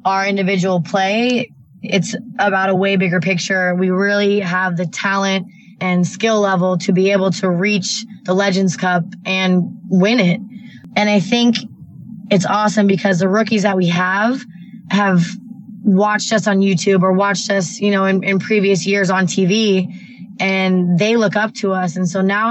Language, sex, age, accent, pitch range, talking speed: English, female, 20-39, American, 185-210 Hz, 170 wpm